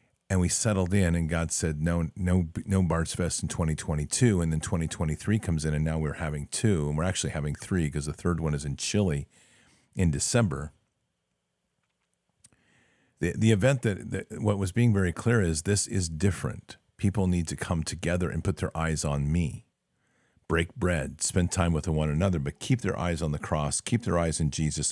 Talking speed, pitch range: 195 wpm, 80-100 Hz